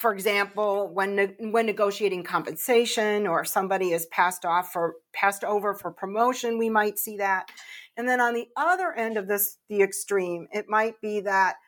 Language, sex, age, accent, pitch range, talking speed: English, female, 40-59, American, 190-230 Hz, 175 wpm